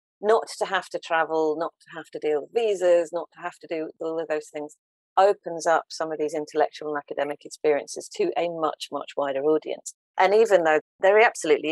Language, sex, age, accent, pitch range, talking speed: English, female, 40-59, British, 155-185 Hz, 210 wpm